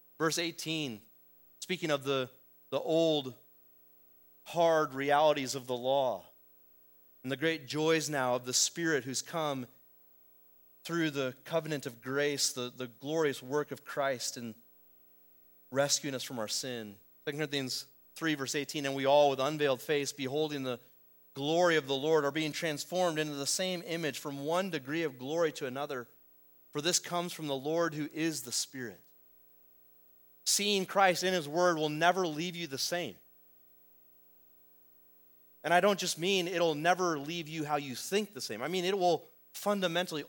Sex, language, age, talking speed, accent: male, English, 30-49, 165 wpm, American